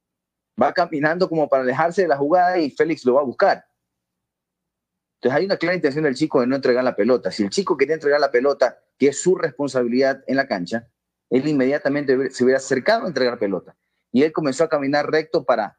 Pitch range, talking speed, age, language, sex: 120-160 Hz, 210 wpm, 30-49, Spanish, male